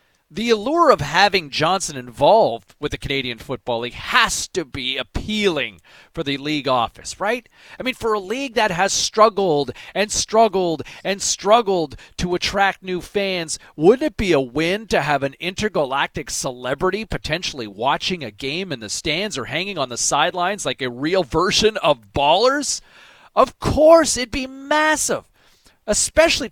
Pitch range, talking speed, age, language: 145-245 Hz, 160 wpm, 40-59, English